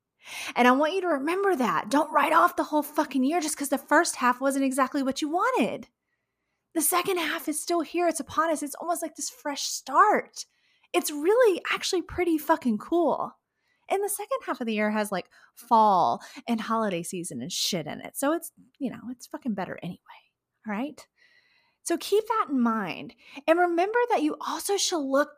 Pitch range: 215-340 Hz